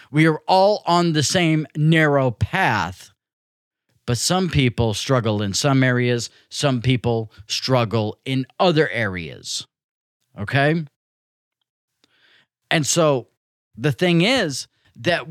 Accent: American